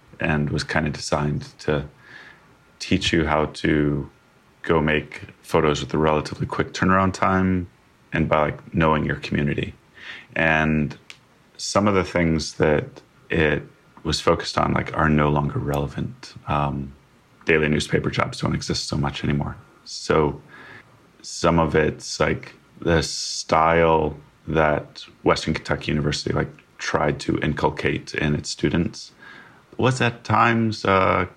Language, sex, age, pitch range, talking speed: English, male, 30-49, 75-90 Hz, 135 wpm